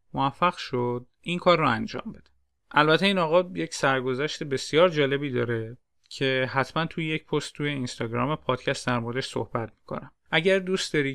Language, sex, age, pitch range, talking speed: Persian, male, 30-49, 125-160 Hz, 165 wpm